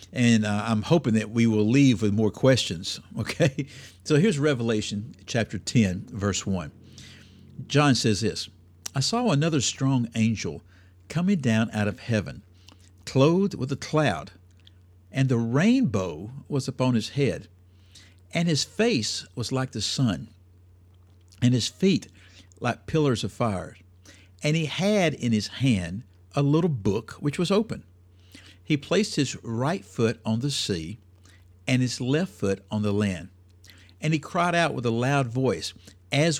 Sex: male